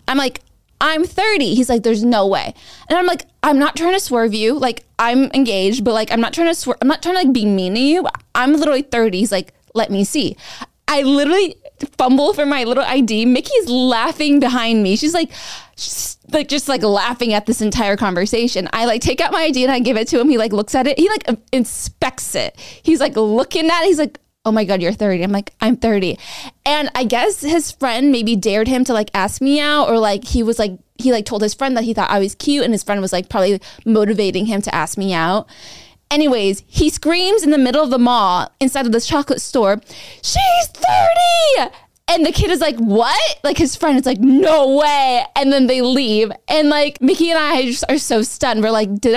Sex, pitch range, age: female, 220-295 Hz, 20-39